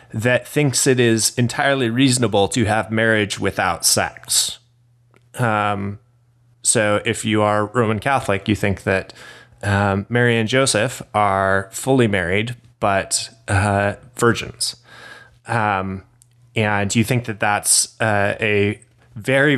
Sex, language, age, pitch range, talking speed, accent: male, English, 20-39, 105-120 Hz, 125 wpm, American